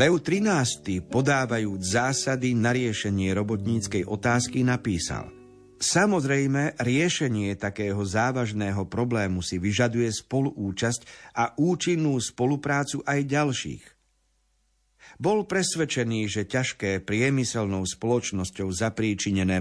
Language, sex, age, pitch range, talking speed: Slovak, male, 50-69, 105-135 Hz, 90 wpm